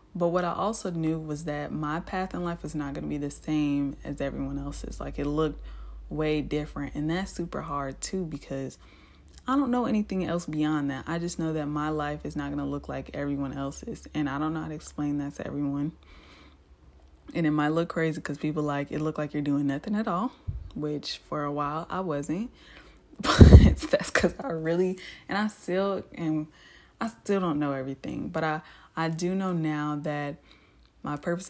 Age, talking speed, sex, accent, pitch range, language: 20-39, 200 wpm, female, American, 140-165 Hz, English